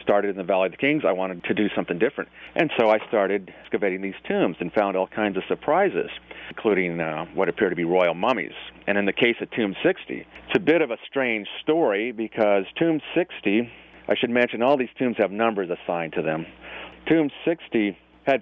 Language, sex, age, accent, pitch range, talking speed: English, male, 40-59, American, 100-120 Hz, 210 wpm